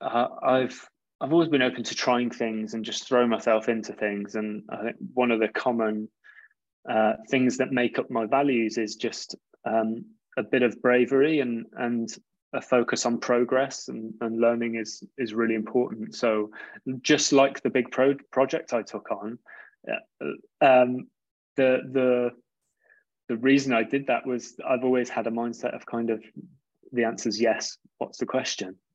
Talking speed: 175 wpm